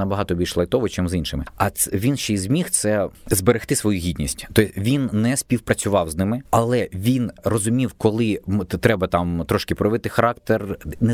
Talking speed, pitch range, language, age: 170 wpm, 90-110 Hz, Ukrainian, 20-39